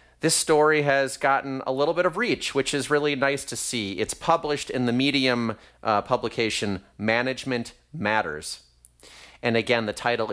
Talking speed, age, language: 165 wpm, 30-49, English